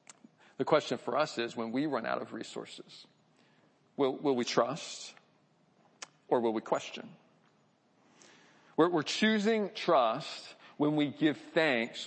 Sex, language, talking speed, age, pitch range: male, English, 135 wpm, 40-59, 115-145 Hz